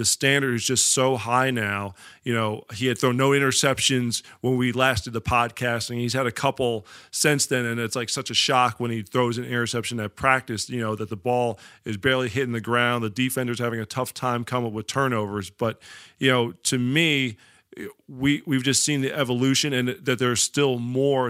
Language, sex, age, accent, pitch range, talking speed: English, male, 40-59, American, 115-130 Hz, 210 wpm